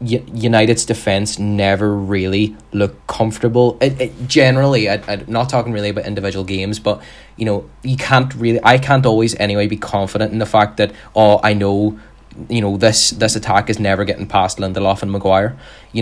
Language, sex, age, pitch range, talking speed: English, male, 20-39, 105-125 Hz, 185 wpm